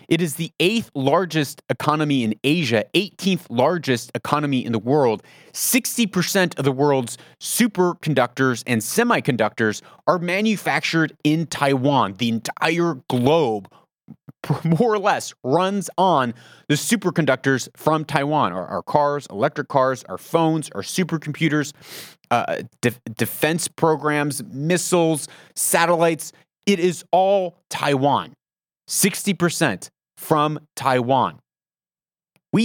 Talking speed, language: 110 wpm, English